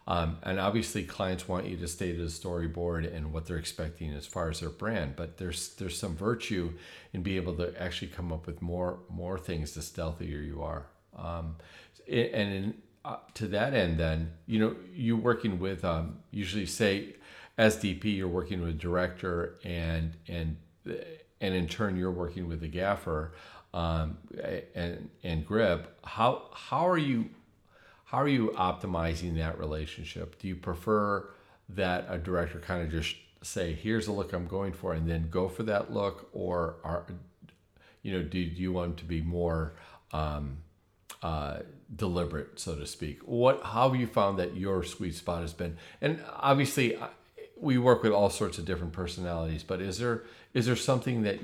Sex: male